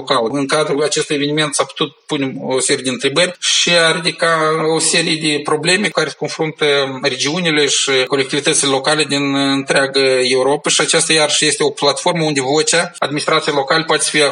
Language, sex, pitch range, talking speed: Romanian, male, 140-165 Hz, 175 wpm